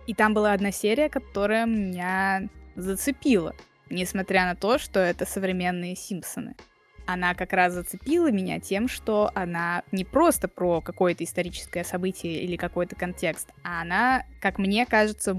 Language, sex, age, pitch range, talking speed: Russian, female, 20-39, 185-235 Hz, 145 wpm